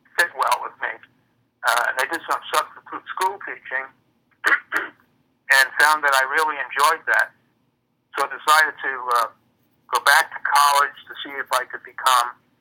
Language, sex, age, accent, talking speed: English, male, 50-69, American, 160 wpm